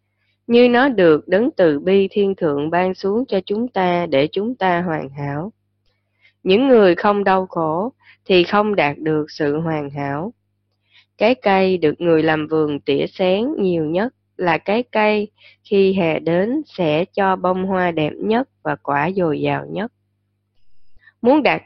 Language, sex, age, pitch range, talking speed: Vietnamese, female, 20-39, 145-205 Hz, 165 wpm